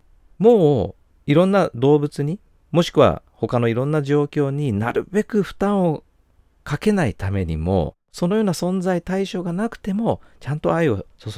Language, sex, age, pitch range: Japanese, male, 40-59, 100-160 Hz